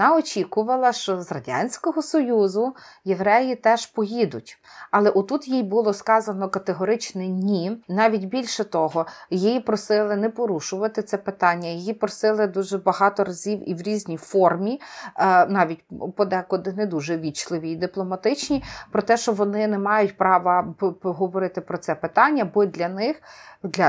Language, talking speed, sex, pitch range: Ukrainian, 140 wpm, female, 180-220 Hz